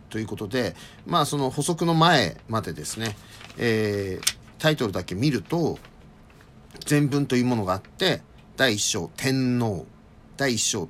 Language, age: Japanese, 50-69